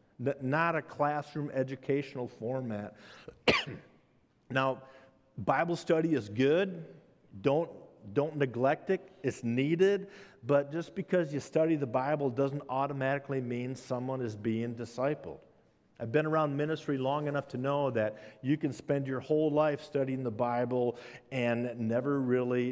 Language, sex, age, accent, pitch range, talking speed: English, male, 50-69, American, 115-140 Hz, 135 wpm